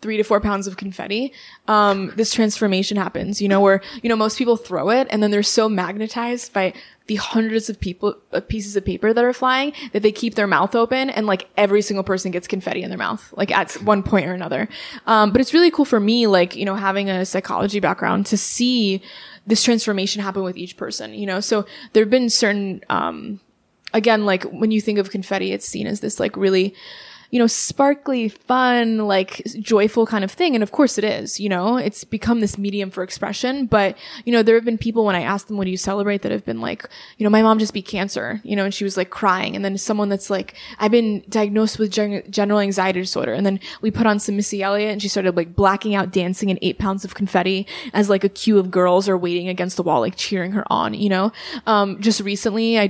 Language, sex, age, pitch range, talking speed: English, female, 20-39, 195-225 Hz, 235 wpm